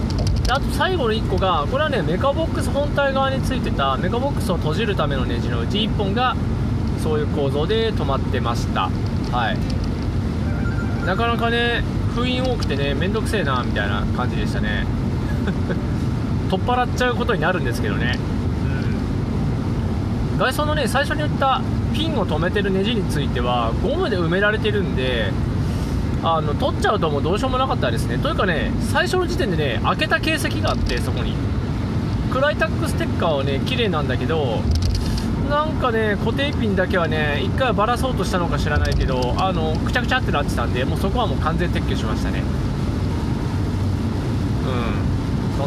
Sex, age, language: male, 20-39, Japanese